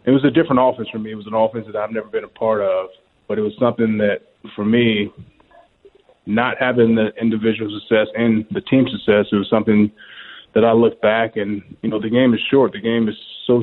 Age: 20-39